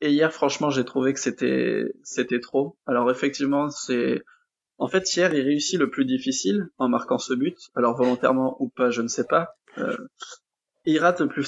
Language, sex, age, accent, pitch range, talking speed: French, male, 20-39, French, 130-150 Hz, 195 wpm